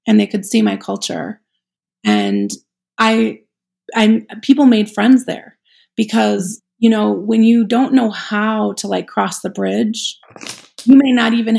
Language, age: English, 30-49